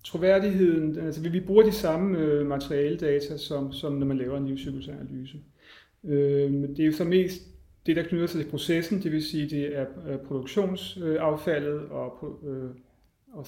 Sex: male